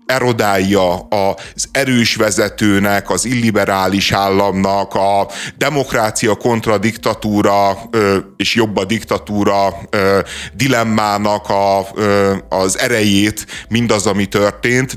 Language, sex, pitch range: Hungarian, male, 100-120 Hz